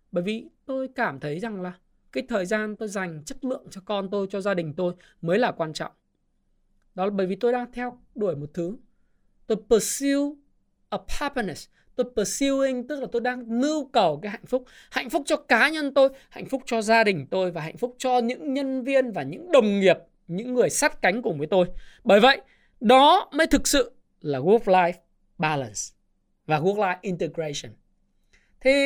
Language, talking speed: Vietnamese, 200 wpm